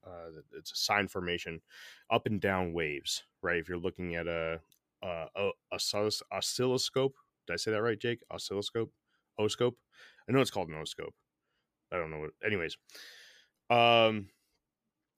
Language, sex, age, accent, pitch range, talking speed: English, male, 20-39, American, 90-105 Hz, 150 wpm